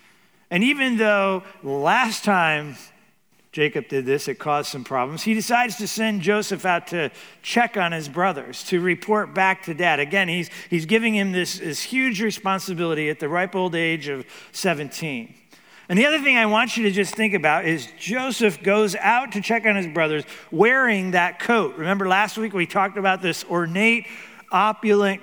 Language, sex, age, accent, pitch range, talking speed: English, male, 50-69, American, 175-215 Hz, 180 wpm